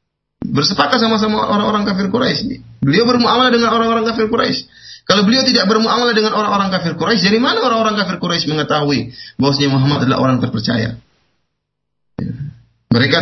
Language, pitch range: Malay, 165-230 Hz